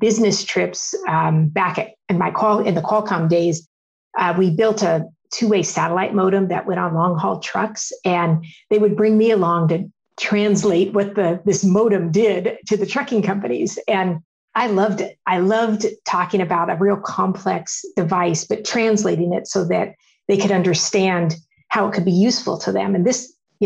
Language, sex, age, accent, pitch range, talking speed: English, female, 50-69, American, 175-205 Hz, 185 wpm